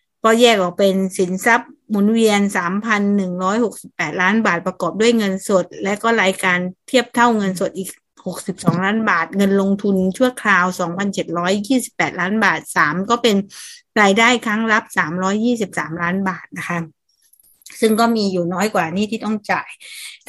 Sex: female